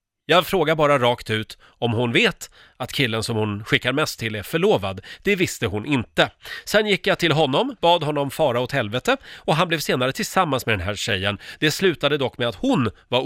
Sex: male